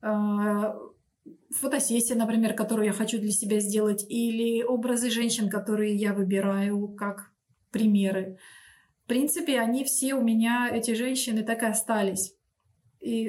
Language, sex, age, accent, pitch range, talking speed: Russian, female, 20-39, native, 210-255 Hz, 125 wpm